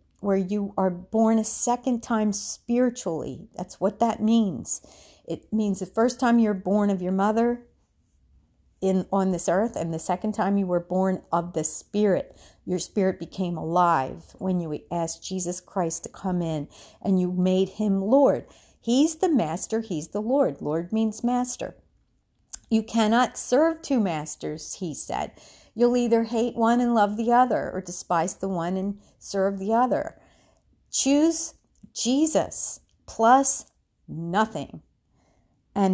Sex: female